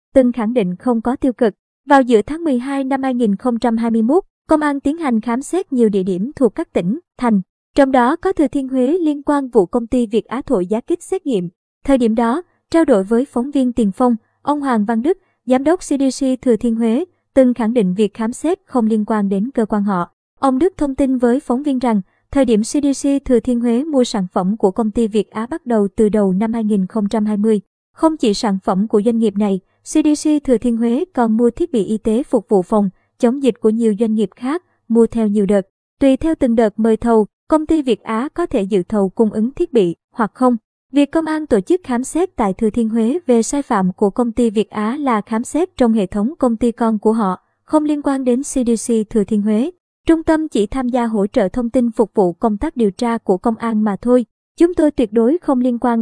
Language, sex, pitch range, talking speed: Vietnamese, male, 220-275 Hz, 240 wpm